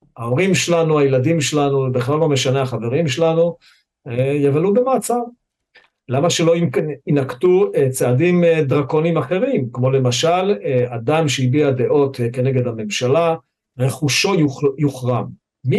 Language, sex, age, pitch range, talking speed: Hebrew, male, 50-69, 125-170 Hz, 105 wpm